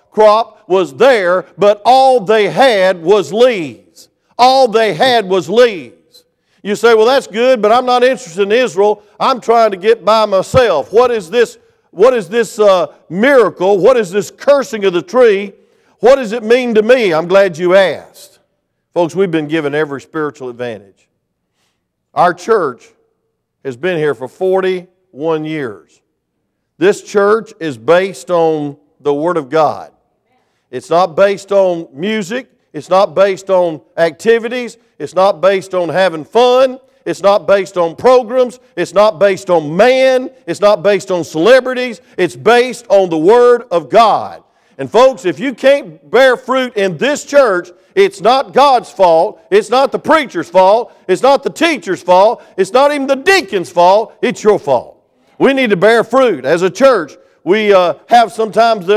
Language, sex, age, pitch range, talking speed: English, male, 50-69, 180-250 Hz, 165 wpm